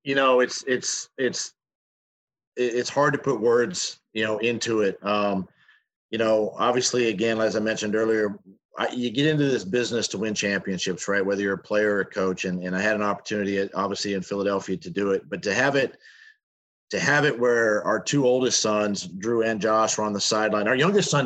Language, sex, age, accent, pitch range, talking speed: English, male, 40-59, American, 105-135 Hz, 205 wpm